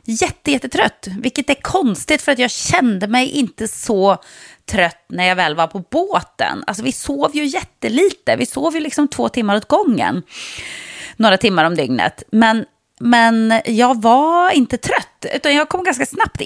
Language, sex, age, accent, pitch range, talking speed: English, female, 30-49, Swedish, 180-250 Hz, 165 wpm